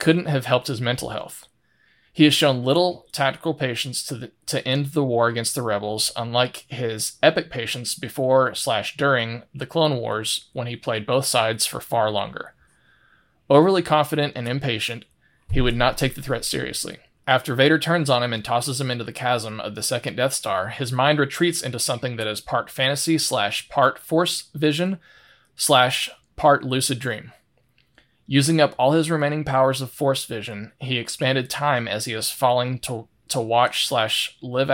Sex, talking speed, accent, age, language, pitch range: male, 180 wpm, American, 20-39, English, 115-145 Hz